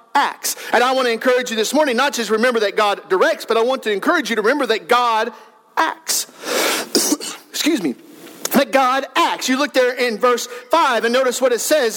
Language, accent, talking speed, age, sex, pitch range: English, American, 210 wpm, 50-69, male, 240-310 Hz